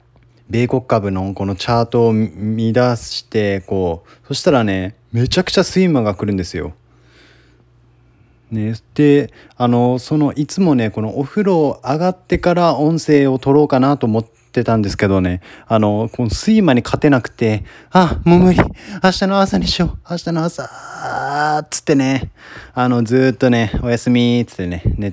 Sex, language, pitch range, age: male, Japanese, 95-125 Hz, 20-39